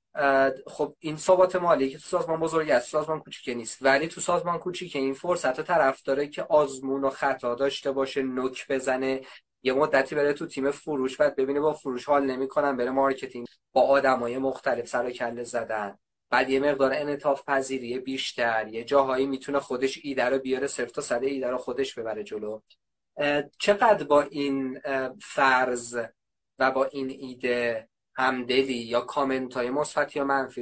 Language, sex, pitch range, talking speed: Persian, male, 130-155 Hz, 165 wpm